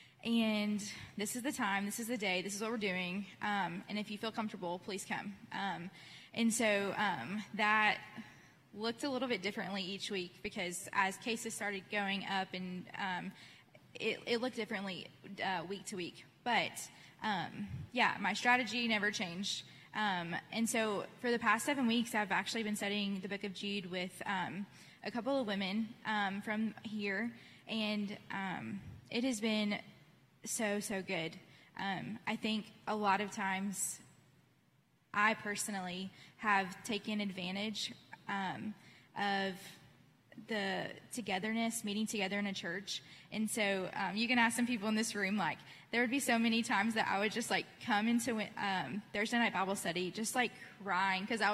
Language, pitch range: English, 195-220 Hz